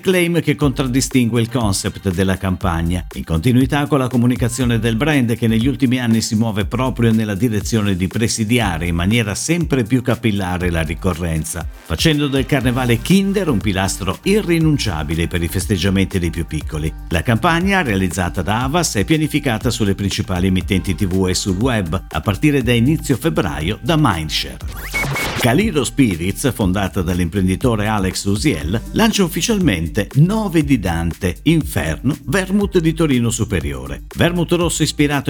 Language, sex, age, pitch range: Italian, male, 50-69, 95-140 Hz